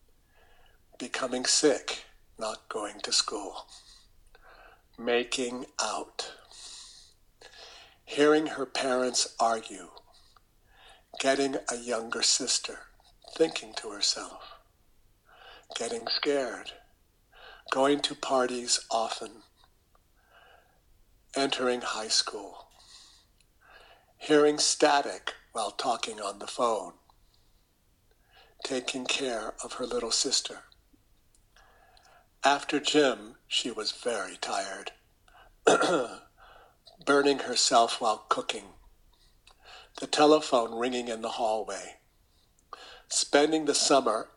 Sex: male